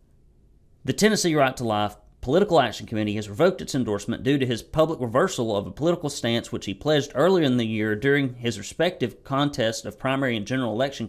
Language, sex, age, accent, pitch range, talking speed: English, male, 40-59, American, 105-145 Hz, 200 wpm